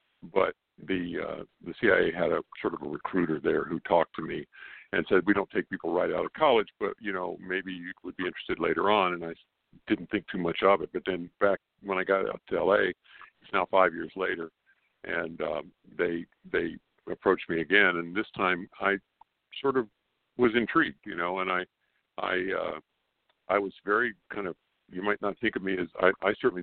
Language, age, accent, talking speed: English, 50-69, American, 210 wpm